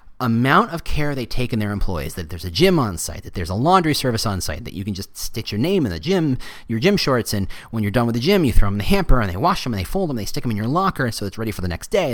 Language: English